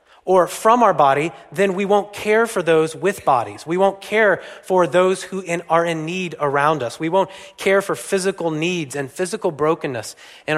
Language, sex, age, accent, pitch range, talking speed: English, male, 30-49, American, 130-185 Hz, 185 wpm